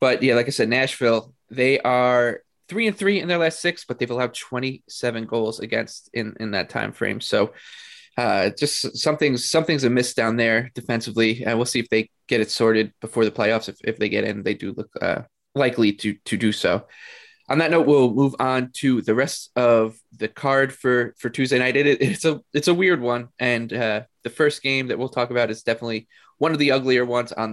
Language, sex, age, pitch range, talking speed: English, male, 20-39, 115-135 Hz, 215 wpm